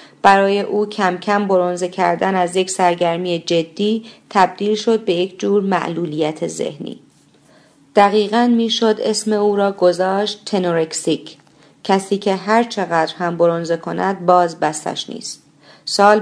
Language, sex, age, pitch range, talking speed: Persian, female, 40-59, 175-210 Hz, 130 wpm